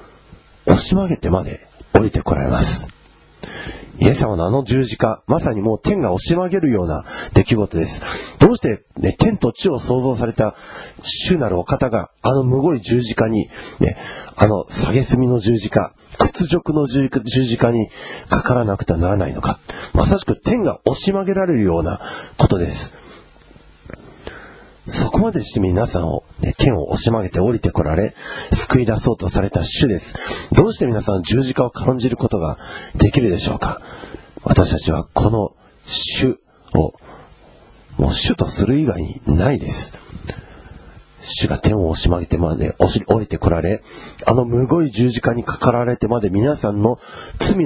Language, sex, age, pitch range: Japanese, male, 40-59, 95-130 Hz